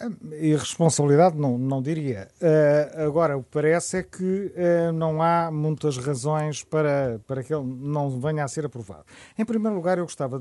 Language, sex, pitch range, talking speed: Portuguese, male, 145-185 Hz, 180 wpm